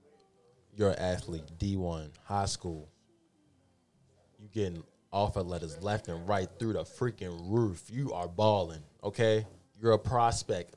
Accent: American